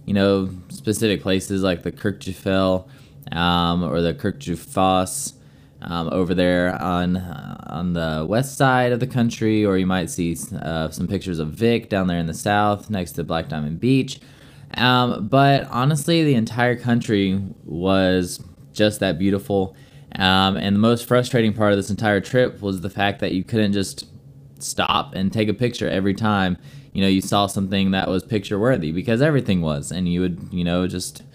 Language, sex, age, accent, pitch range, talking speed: English, male, 20-39, American, 95-120 Hz, 175 wpm